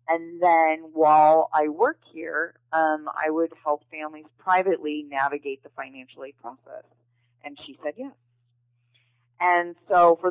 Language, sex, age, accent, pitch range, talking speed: English, female, 30-49, American, 130-160 Hz, 140 wpm